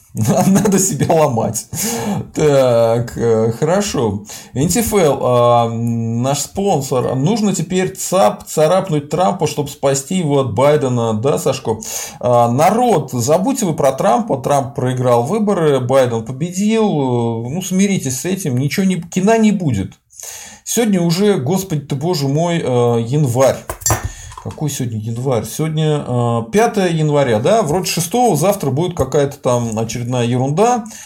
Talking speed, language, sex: 120 wpm, Russian, male